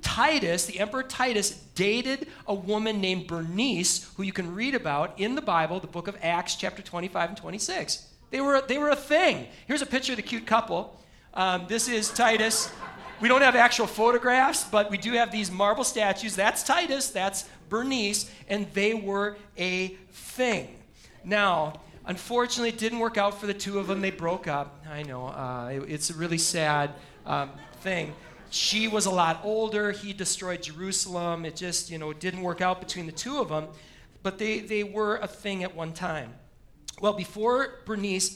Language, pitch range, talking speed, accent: English, 160-210 Hz, 185 wpm, American